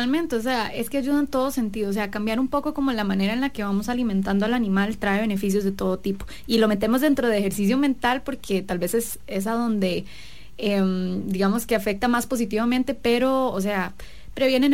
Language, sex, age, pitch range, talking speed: English, female, 20-39, 200-245 Hz, 215 wpm